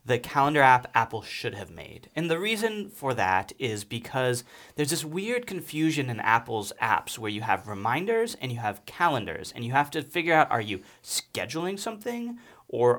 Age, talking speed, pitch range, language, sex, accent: 30-49, 185 wpm, 110-160 Hz, English, male, American